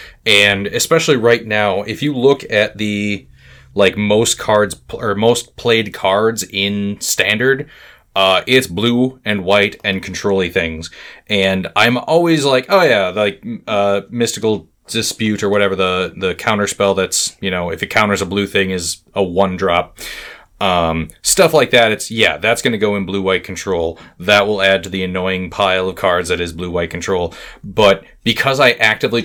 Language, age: English, 30-49